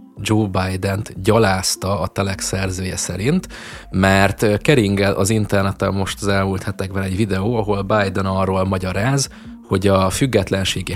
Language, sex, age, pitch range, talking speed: Hungarian, male, 20-39, 95-110 Hz, 130 wpm